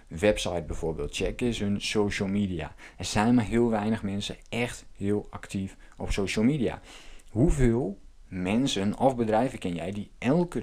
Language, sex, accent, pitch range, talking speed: Dutch, male, Dutch, 90-120 Hz, 150 wpm